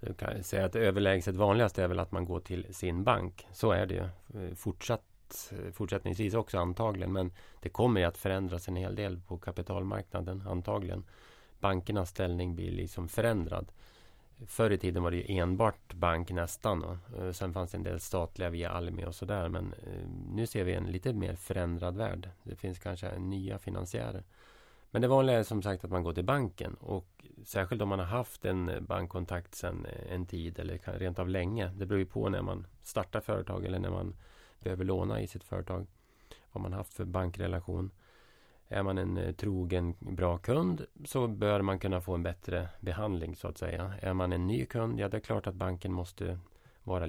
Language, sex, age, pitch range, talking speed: Swedish, male, 30-49, 90-105 Hz, 190 wpm